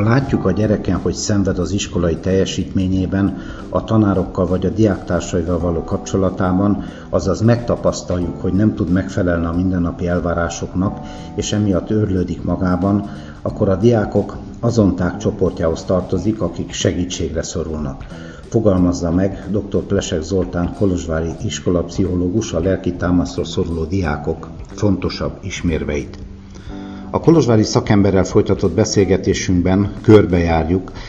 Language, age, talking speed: Hungarian, 60-79, 110 wpm